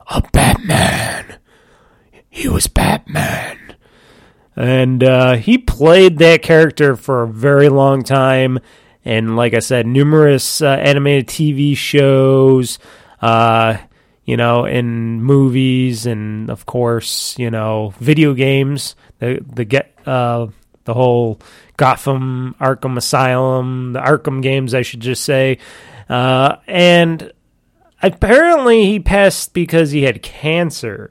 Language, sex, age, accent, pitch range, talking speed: English, male, 30-49, American, 120-150 Hz, 120 wpm